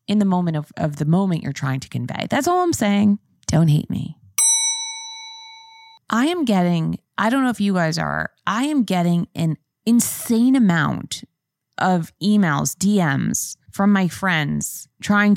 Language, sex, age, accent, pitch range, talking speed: English, female, 20-39, American, 160-235 Hz, 160 wpm